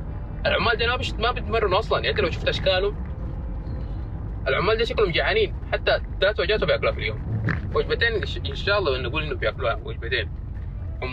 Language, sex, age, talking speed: Arabic, male, 20-39, 165 wpm